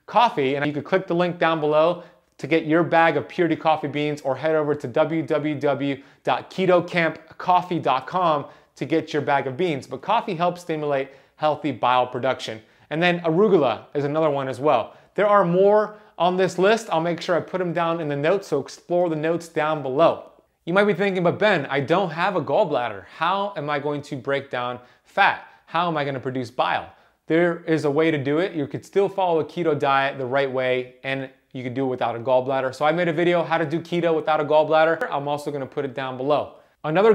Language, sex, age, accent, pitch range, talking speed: English, male, 30-49, American, 140-175 Hz, 220 wpm